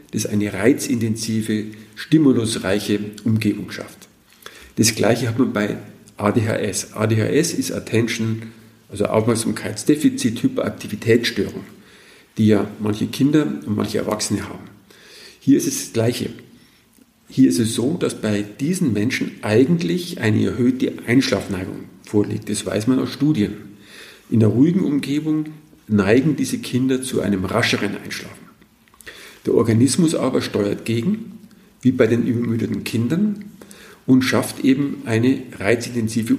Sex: male